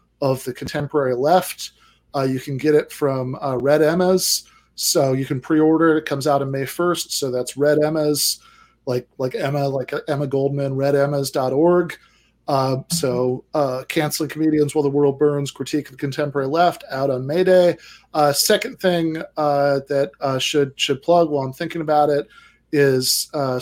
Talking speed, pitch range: 175 wpm, 135-155 Hz